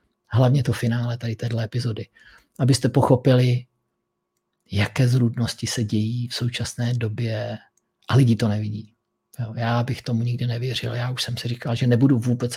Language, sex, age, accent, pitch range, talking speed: Czech, male, 50-69, native, 115-135 Hz, 155 wpm